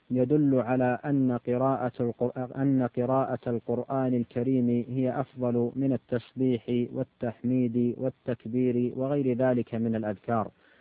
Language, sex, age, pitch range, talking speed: Arabic, male, 40-59, 120-135 Hz, 90 wpm